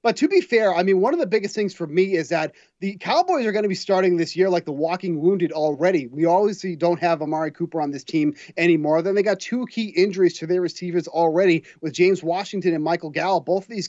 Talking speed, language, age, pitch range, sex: 250 wpm, English, 30-49, 170-210 Hz, male